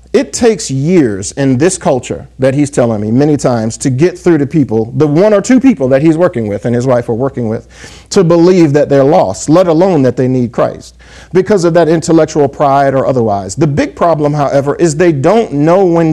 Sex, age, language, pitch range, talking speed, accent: male, 50-69, English, 120-160 Hz, 220 wpm, American